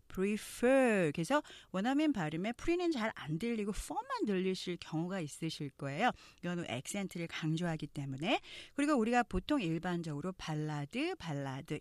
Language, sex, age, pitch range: Korean, female, 40-59, 155-235 Hz